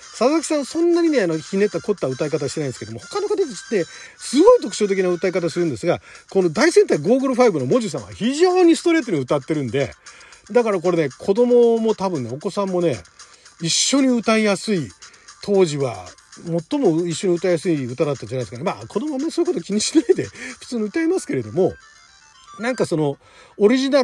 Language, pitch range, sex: Japanese, 150-240 Hz, male